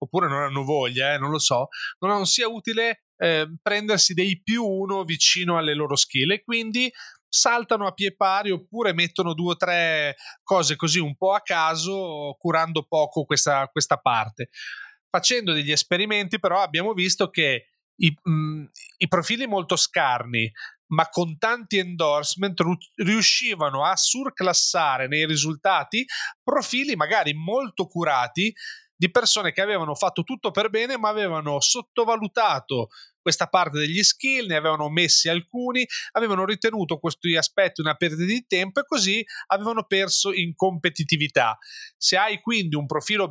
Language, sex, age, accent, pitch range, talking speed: Italian, male, 30-49, native, 155-215 Hz, 145 wpm